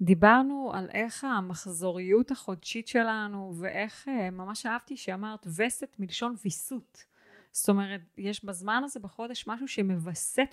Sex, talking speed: female, 120 wpm